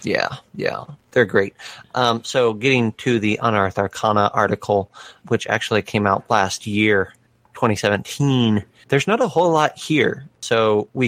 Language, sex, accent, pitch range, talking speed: English, male, American, 100-115 Hz, 145 wpm